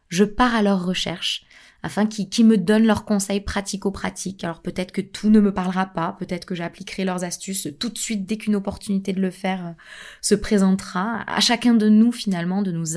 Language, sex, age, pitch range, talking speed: French, female, 20-39, 180-215 Hz, 205 wpm